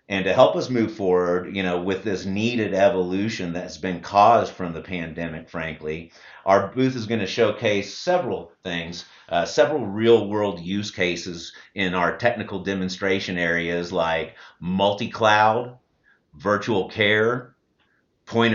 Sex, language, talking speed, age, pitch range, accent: male, English, 140 wpm, 50-69, 90-115 Hz, American